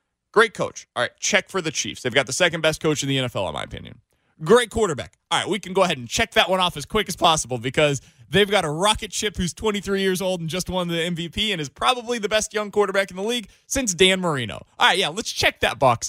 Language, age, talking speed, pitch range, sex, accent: English, 20-39, 270 wpm, 165-245 Hz, male, American